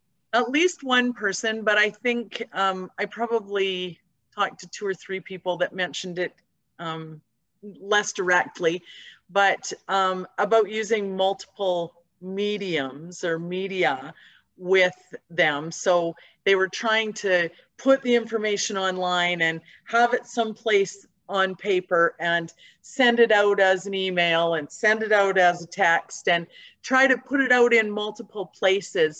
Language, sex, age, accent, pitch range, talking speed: English, female, 40-59, American, 175-215 Hz, 145 wpm